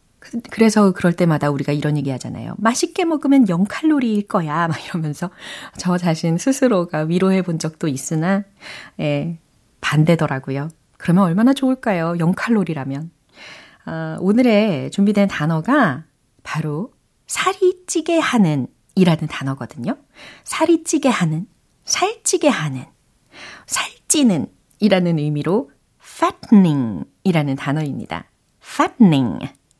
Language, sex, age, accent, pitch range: Korean, female, 40-59, native, 155-255 Hz